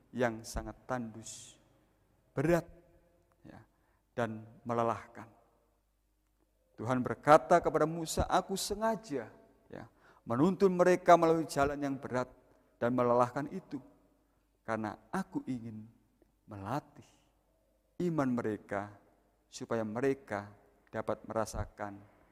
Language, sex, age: Indonesian, male, 50-69